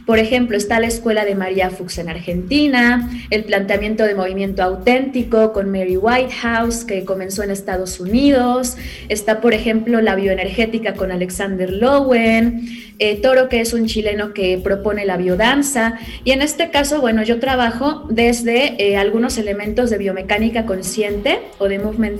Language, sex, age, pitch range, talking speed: Spanish, female, 20-39, 205-250 Hz, 155 wpm